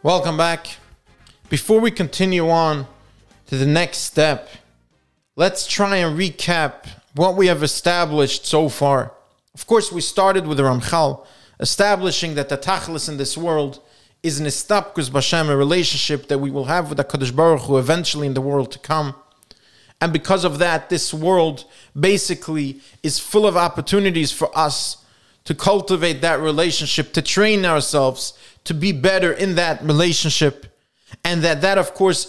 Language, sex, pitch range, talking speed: English, male, 145-180 Hz, 160 wpm